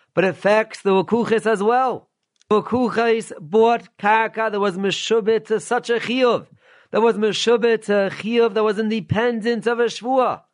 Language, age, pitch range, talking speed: English, 40-59, 195-225 Hz, 160 wpm